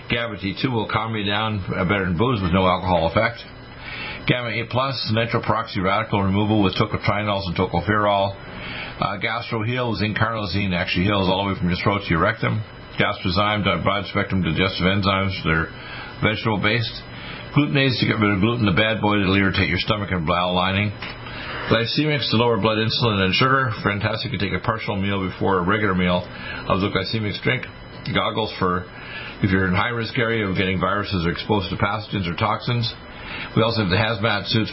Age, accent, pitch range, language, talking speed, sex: 50-69, American, 95-115 Hz, English, 180 wpm, male